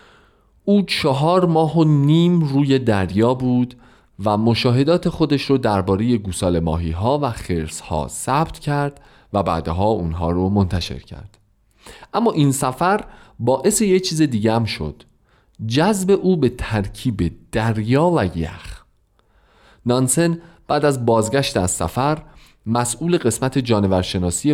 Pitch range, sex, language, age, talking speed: 95-150 Hz, male, Persian, 40-59, 120 wpm